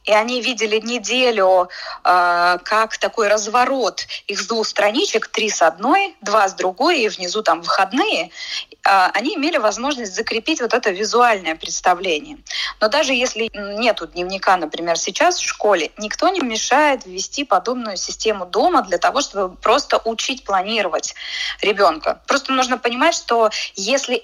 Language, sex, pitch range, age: Russian, female, 190-260 Hz, 20-39